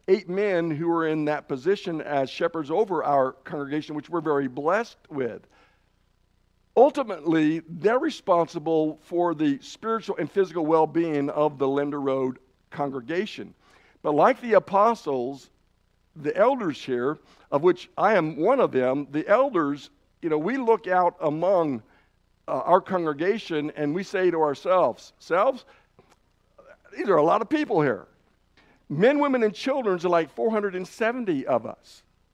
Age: 60-79